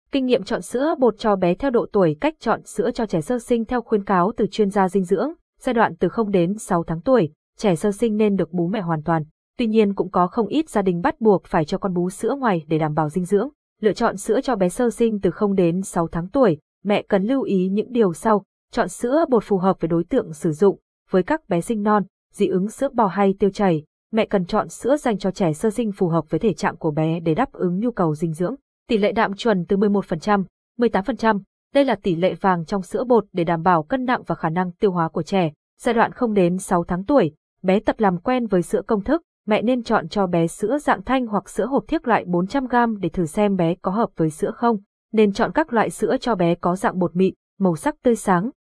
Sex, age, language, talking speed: female, 20-39, Vietnamese, 255 wpm